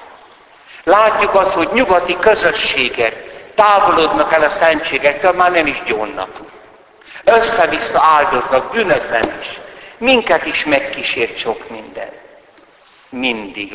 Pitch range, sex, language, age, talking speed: 125-205 Hz, male, Hungarian, 60-79, 95 wpm